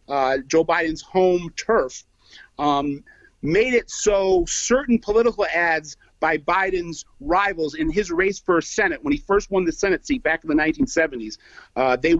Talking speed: 160 wpm